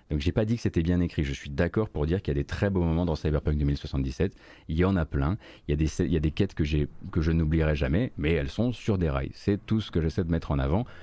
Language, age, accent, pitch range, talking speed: French, 30-49, French, 80-120 Hz, 315 wpm